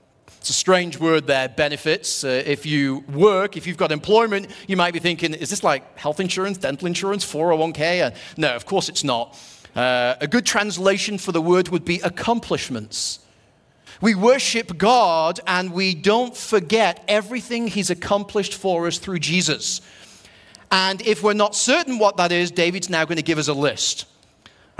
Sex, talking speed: male, 175 wpm